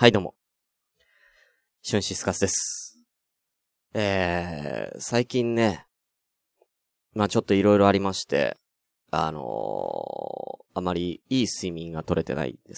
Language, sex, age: Japanese, male, 20-39